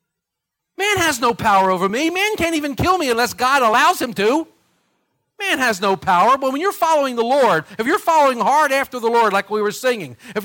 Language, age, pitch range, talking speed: English, 50-69, 165-245 Hz, 220 wpm